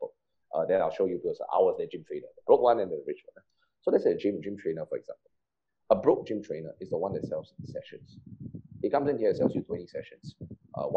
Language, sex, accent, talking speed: English, male, Malaysian, 250 wpm